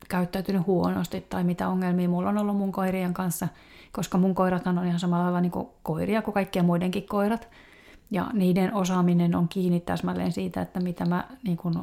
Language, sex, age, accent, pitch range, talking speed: Finnish, female, 30-49, native, 180-210 Hz, 190 wpm